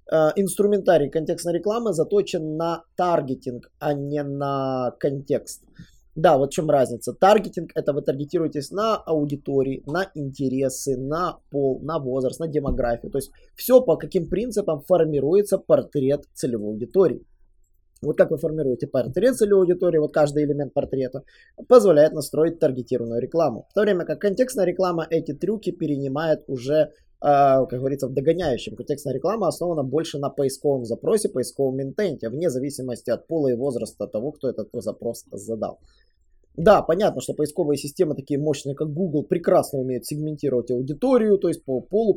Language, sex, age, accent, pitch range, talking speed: Russian, male, 20-39, native, 135-175 Hz, 150 wpm